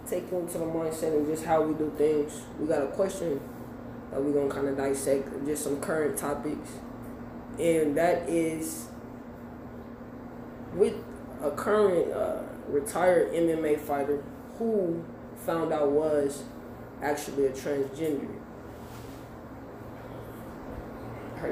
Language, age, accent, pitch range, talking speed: English, 20-39, American, 140-170 Hz, 120 wpm